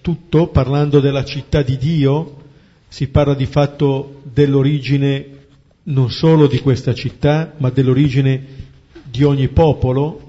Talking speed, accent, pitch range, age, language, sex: 120 wpm, native, 130-155 Hz, 50-69, Italian, male